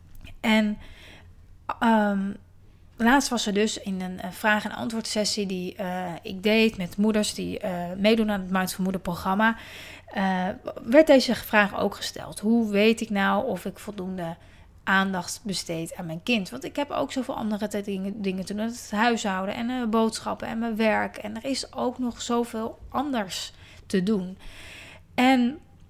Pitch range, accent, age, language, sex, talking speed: 195-230 Hz, Dutch, 30-49, Dutch, female, 160 wpm